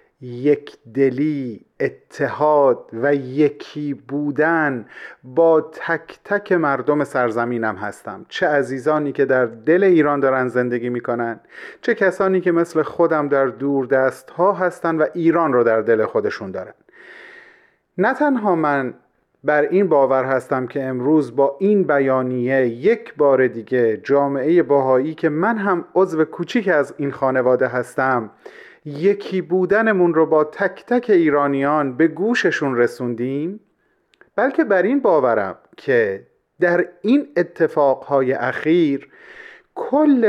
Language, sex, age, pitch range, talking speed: Persian, male, 30-49, 135-190 Hz, 125 wpm